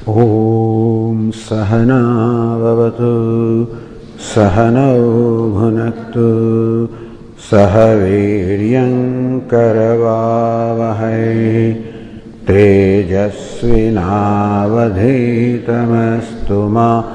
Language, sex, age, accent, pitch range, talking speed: English, male, 60-79, Indian, 105-115 Hz, 45 wpm